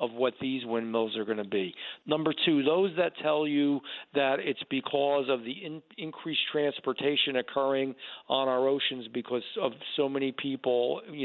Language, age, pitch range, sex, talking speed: English, 40-59, 125-150 Hz, male, 170 wpm